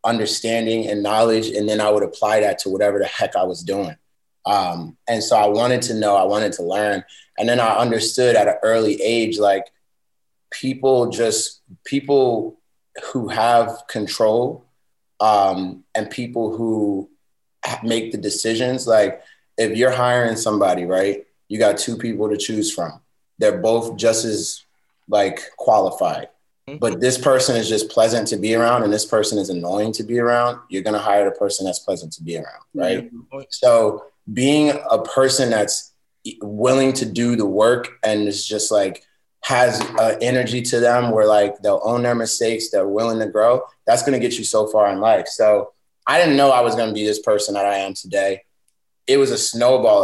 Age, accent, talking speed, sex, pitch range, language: 20-39, American, 185 wpm, male, 105-120 Hz, English